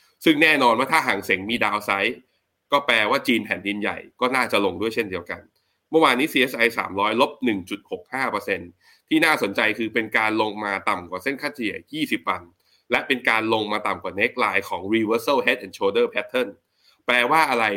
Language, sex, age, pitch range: Thai, male, 20-39, 100-140 Hz